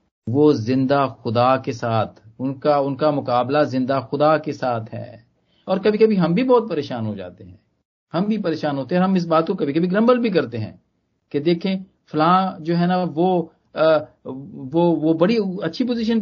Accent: native